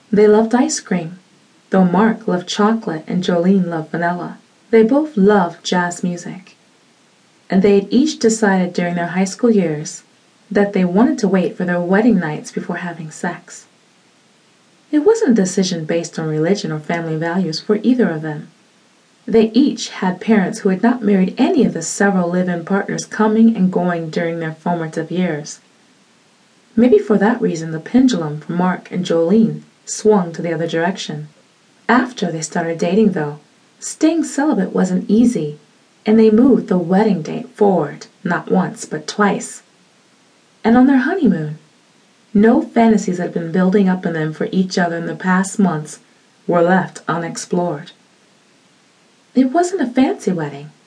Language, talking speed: English, 160 wpm